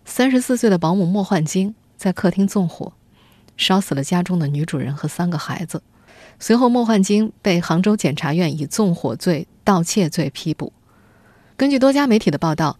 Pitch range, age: 175-245 Hz, 20-39